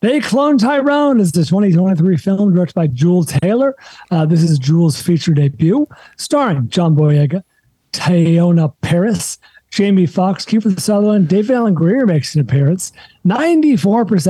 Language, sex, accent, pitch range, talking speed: English, male, American, 160-205 Hz, 145 wpm